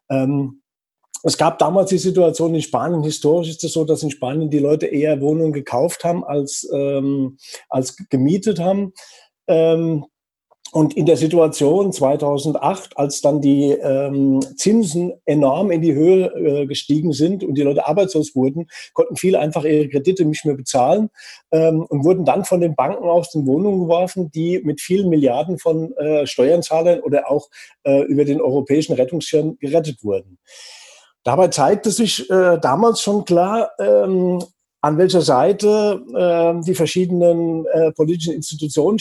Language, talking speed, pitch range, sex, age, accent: German, 150 wpm, 145-185 Hz, male, 50-69, German